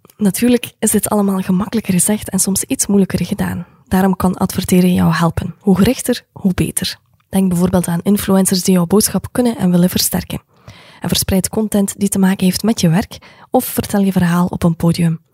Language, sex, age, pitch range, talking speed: Dutch, female, 20-39, 175-205 Hz, 190 wpm